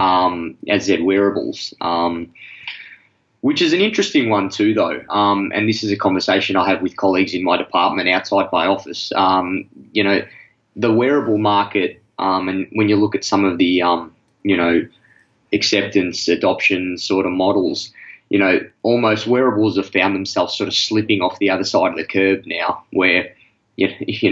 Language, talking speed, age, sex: English, 175 wpm, 20-39, male